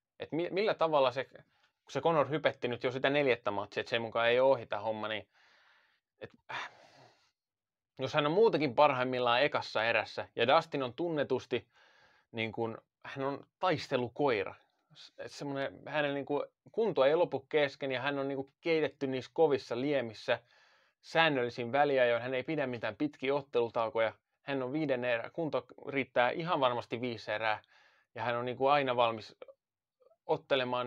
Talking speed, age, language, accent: 150 wpm, 20-39, Finnish, native